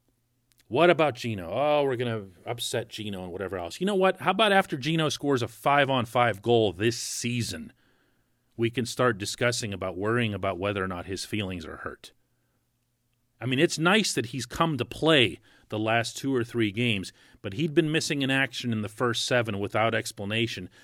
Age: 40-59